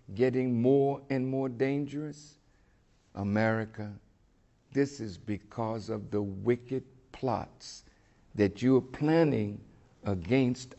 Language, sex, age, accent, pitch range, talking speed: English, male, 60-79, American, 100-130 Hz, 100 wpm